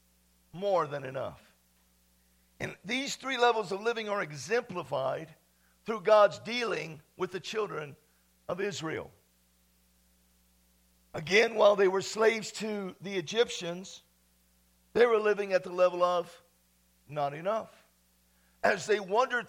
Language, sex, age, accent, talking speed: English, male, 50-69, American, 120 wpm